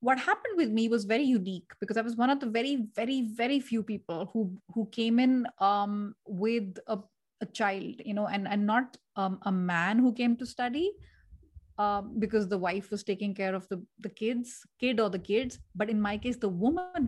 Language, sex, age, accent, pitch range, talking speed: English, female, 30-49, Indian, 195-240 Hz, 210 wpm